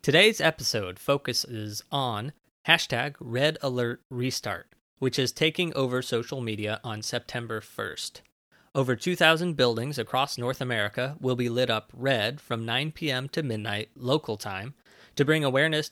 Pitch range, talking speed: 115-140 Hz, 130 wpm